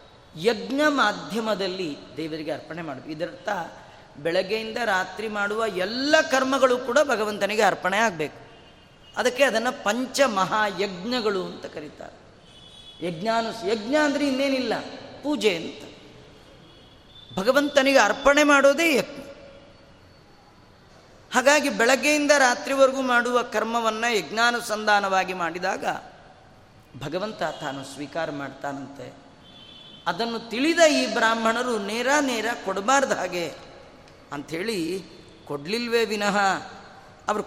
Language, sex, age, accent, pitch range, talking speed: Kannada, female, 30-49, native, 195-260 Hz, 85 wpm